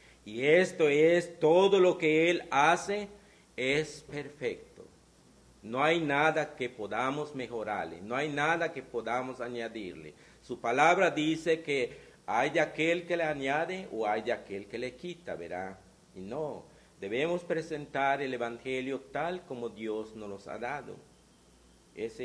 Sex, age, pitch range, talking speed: male, 50-69, 105-155 Hz, 140 wpm